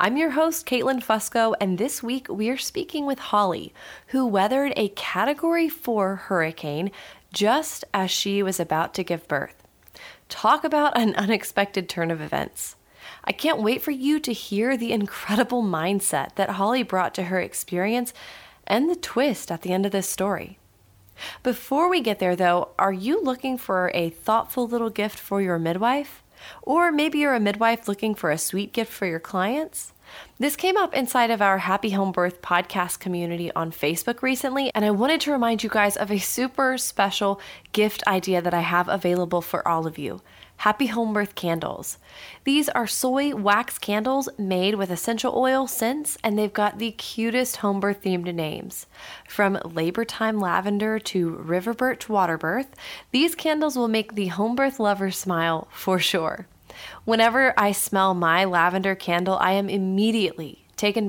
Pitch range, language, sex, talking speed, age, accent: 185-250 Hz, English, female, 165 wpm, 30-49, American